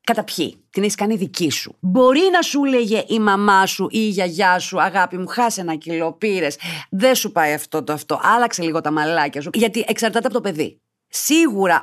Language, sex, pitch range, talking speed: Greek, female, 135-205 Hz, 205 wpm